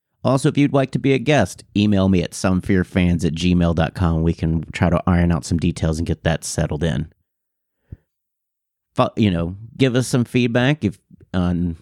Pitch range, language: 90-115 Hz, English